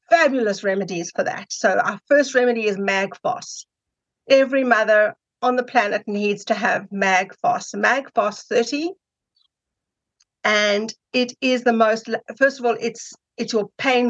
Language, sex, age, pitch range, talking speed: English, female, 50-69, 205-250 Hz, 140 wpm